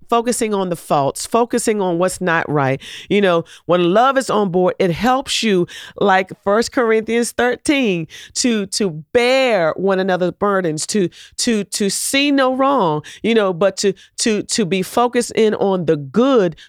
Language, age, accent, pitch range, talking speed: English, 40-59, American, 180-250 Hz, 170 wpm